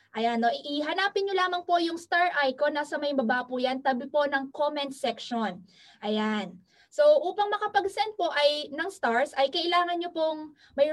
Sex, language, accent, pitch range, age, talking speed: female, Filipino, native, 265-335 Hz, 20-39, 180 wpm